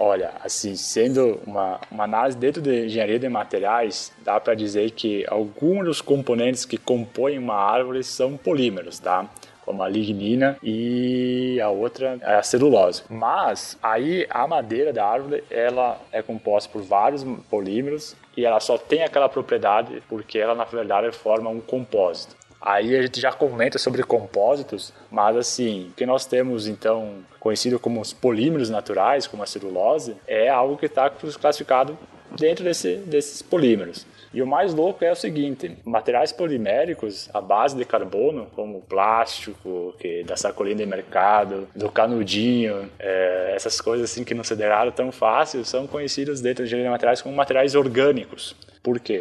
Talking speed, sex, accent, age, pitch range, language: 160 wpm, male, Brazilian, 20-39, 110-140 Hz, Portuguese